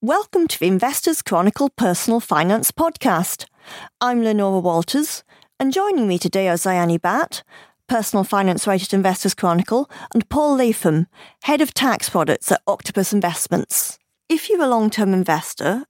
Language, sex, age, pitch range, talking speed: English, female, 40-59, 180-245 Hz, 145 wpm